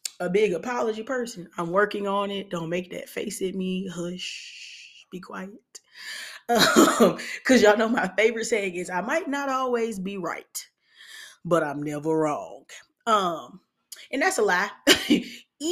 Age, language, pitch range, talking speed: 20-39, English, 180-255 Hz, 155 wpm